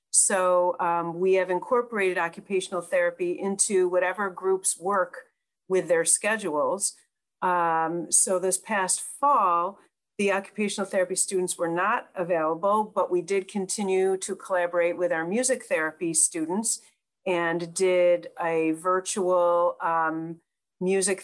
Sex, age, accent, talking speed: female, 50-69, American, 120 wpm